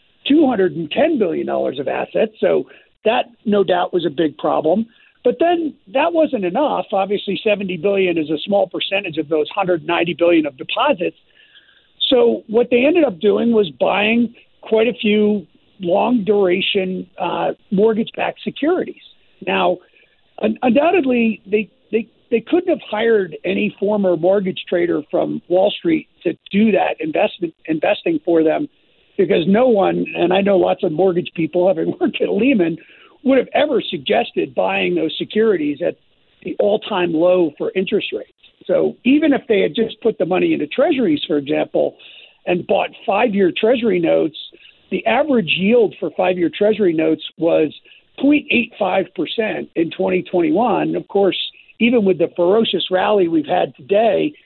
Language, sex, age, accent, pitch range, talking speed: English, male, 50-69, American, 180-245 Hz, 150 wpm